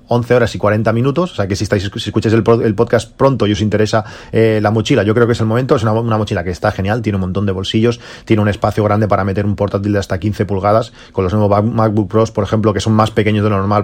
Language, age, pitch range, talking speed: Spanish, 30-49, 105-120 Hz, 285 wpm